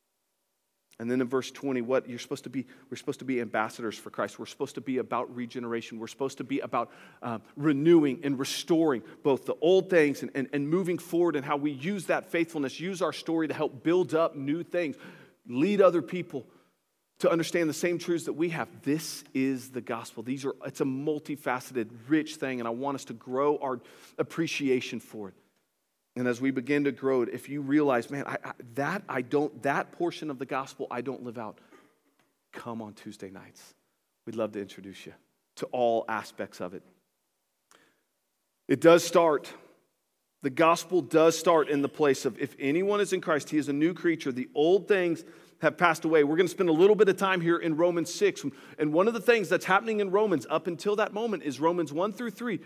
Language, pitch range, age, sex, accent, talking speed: English, 130-170 Hz, 40-59, male, American, 210 wpm